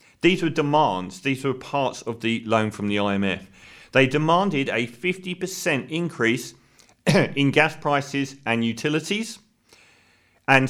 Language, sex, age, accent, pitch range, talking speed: English, male, 40-59, British, 110-150 Hz, 130 wpm